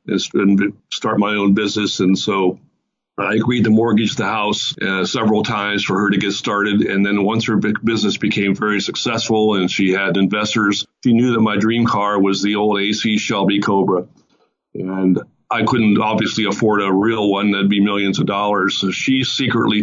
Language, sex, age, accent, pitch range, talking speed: English, male, 50-69, American, 100-110 Hz, 185 wpm